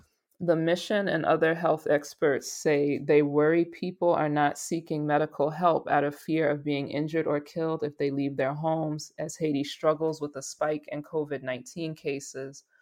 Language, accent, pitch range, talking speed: English, American, 145-170 Hz, 175 wpm